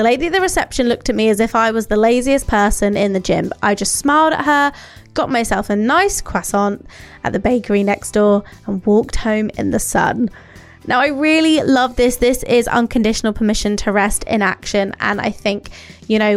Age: 20-39